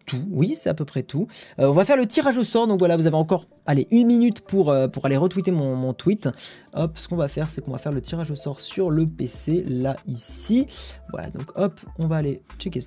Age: 20-39